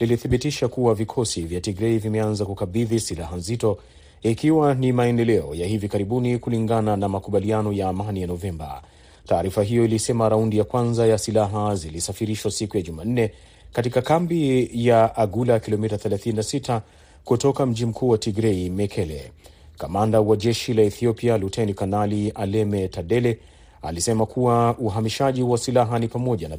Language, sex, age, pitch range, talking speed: Swahili, male, 30-49, 105-120 Hz, 140 wpm